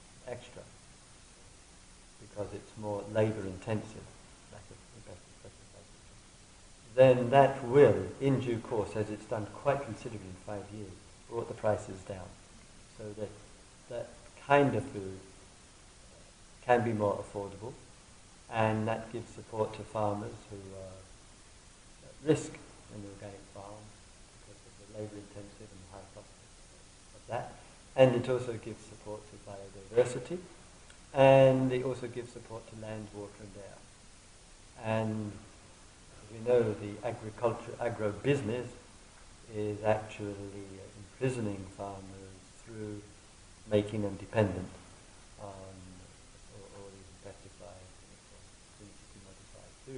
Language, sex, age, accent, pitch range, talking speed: English, male, 50-69, British, 100-115 Hz, 115 wpm